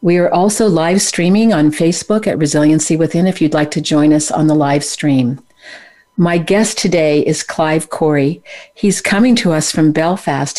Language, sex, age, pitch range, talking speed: English, female, 50-69, 155-195 Hz, 180 wpm